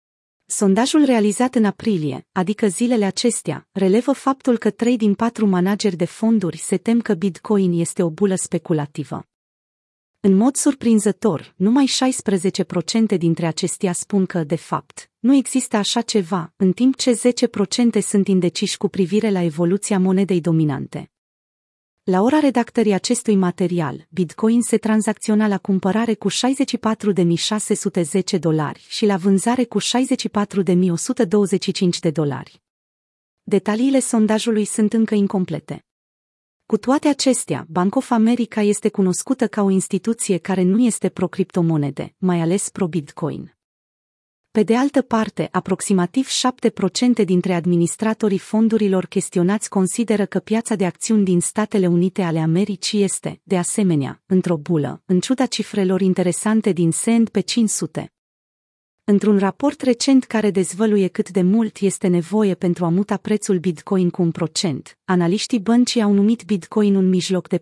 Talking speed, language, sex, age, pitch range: 135 wpm, Romanian, female, 30-49, 180-225 Hz